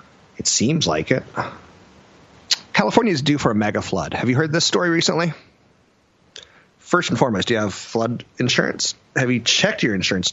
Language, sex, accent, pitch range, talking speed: English, male, American, 100-125 Hz, 175 wpm